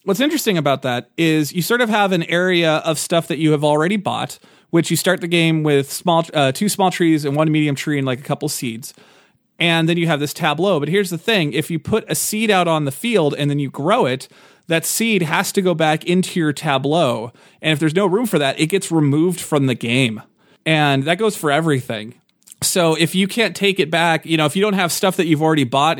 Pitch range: 130-170 Hz